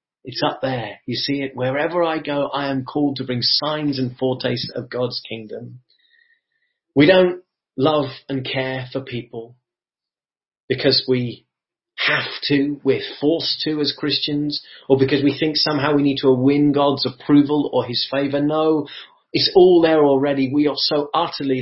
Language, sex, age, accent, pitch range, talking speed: English, male, 30-49, British, 130-160 Hz, 165 wpm